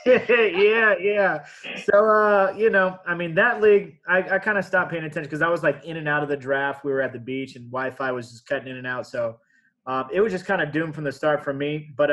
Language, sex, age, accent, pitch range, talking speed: English, male, 20-39, American, 130-150 Hz, 265 wpm